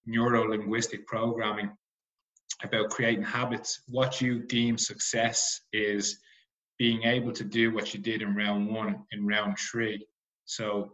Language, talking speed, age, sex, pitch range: English, 130 wpm, 20-39, male, 100-115 Hz